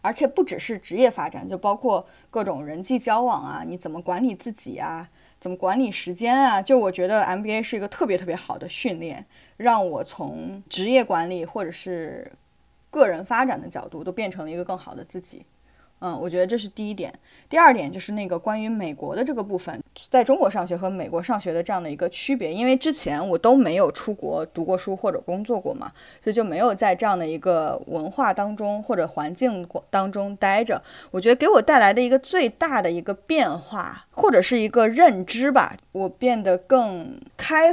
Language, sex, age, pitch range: Chinese, female, 20-39, 180-255 Hz